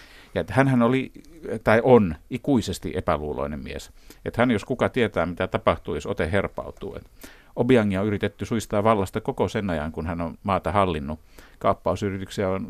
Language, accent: Finnish, native